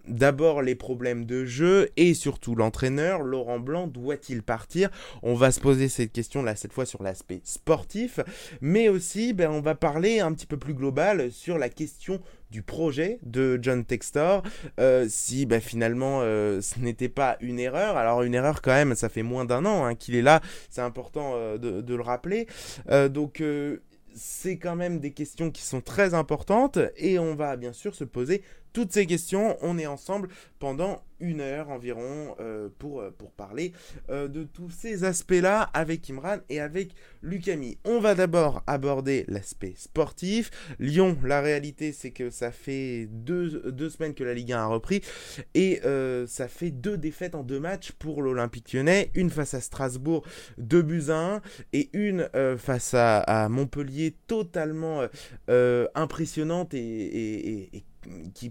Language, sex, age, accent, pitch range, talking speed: French, male, 20-39, French, 125-175 Hz, 180 wpm